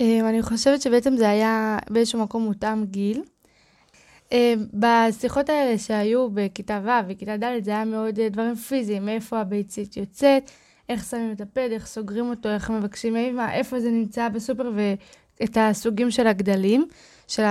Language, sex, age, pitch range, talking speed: Hebrew, female, 20-39, 210-250 Hz, 160 wpm